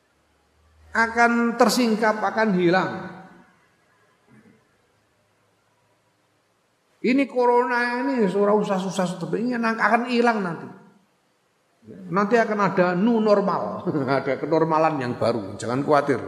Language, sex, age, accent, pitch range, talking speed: Indonesian, male, 50-69, native, 110-170 Hz, 100 wpm